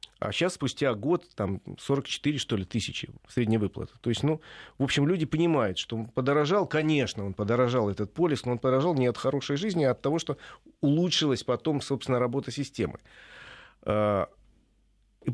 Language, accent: Russian, native